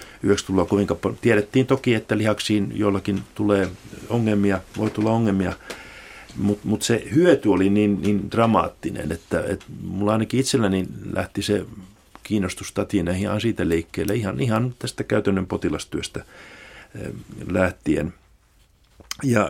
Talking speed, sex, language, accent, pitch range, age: 110 wpm, male, Finnish, native, 95-110 Hz, 50-69